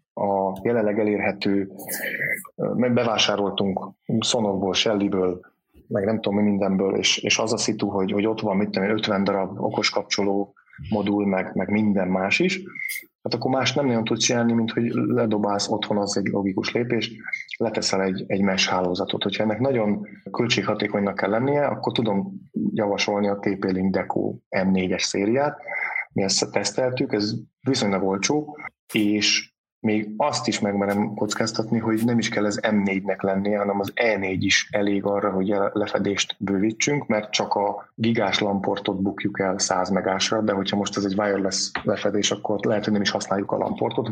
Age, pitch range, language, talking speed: 20-39, 100-110 Hz, Hungarian, 165 wpm